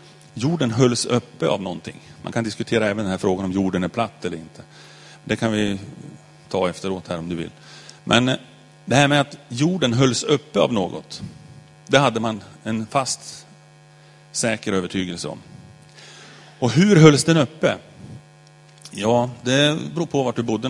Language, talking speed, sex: Swedish, 165 wpm, male